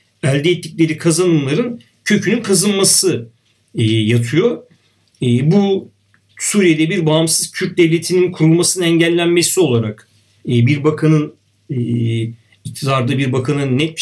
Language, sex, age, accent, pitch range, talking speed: Turkish, male, 50-69, native, 115-180 Hz, 110 wpm